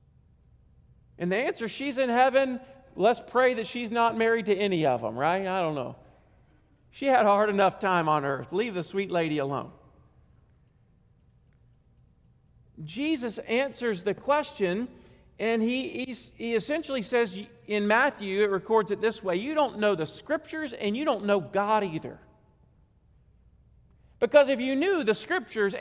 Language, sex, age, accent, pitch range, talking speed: English, male, 40-59, American, 210-290 Hz, 155 wpm